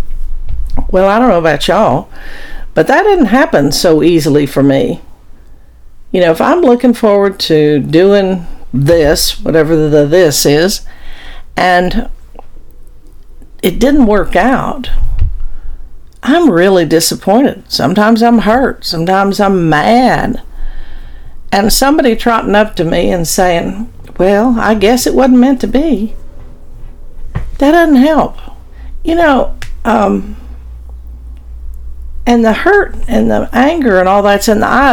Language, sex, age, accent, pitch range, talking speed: English, female, 50-69, American, 145-240 Hz, 130 wpm